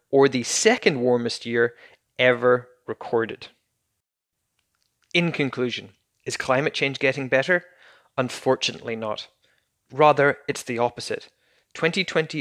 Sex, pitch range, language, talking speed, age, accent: male, 120-150 Hz, English, 100 wpm, 20-39, Irish